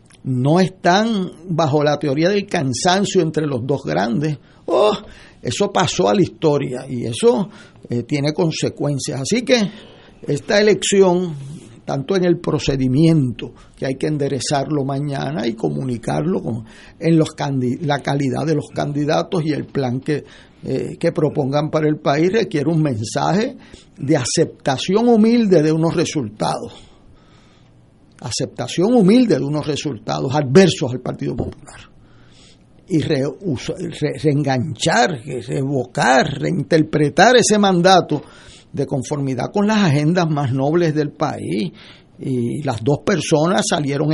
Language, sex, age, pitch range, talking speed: Spanish, male, 60-79, 135-175 Hz, 130 wpm